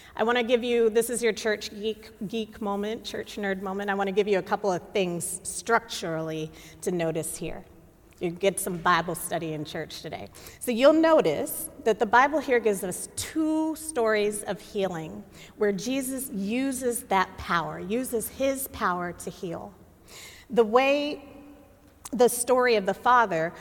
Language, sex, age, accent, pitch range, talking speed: English, female, 40-59, American, 205-265 Hz, 170 wpm